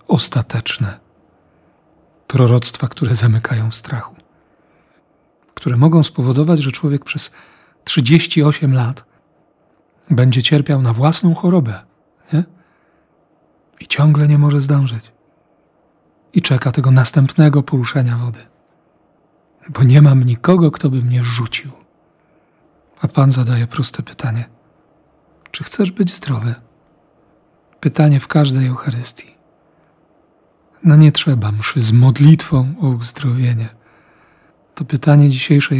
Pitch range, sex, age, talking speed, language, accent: 125-155 Hz, male, 40-59, 100 wpm, Polish, native